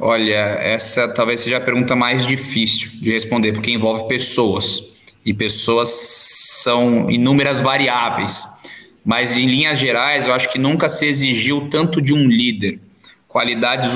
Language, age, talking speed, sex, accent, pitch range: Portuguese, 20-39, 140 wpm, male, Brazilian, 120-145 Hz